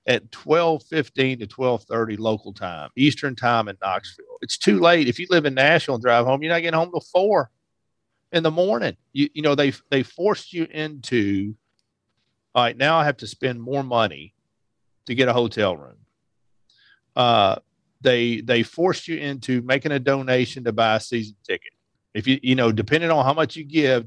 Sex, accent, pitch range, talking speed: male, American, 115-145 Hz, 190 wpm